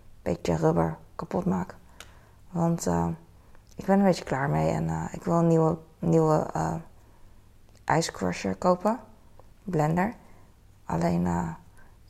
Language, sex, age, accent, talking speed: Dutch, female, 20-39, Dutch, 130 wpm